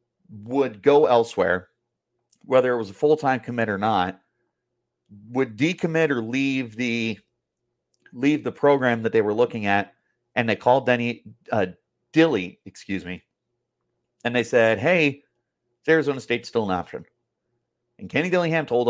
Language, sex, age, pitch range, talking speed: English, male, 30-49, 110-135 Hz, 145 wpm